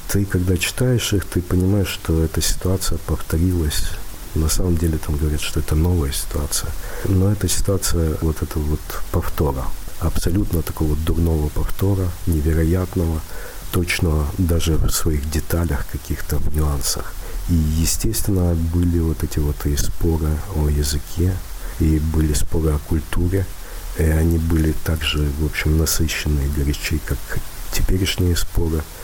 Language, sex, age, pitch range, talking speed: Russian, male, 50-69, 80-95 Hz, 135 wpm